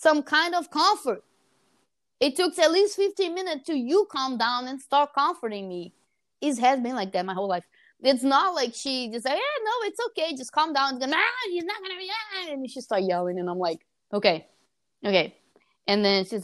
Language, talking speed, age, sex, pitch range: English, 210 wpm, 20-39, female, 195-325 Hz